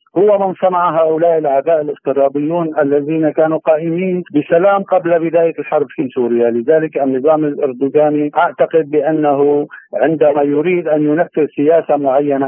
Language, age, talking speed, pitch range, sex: Arabic, 50-69, 125 wpm, 145-170 Hz, male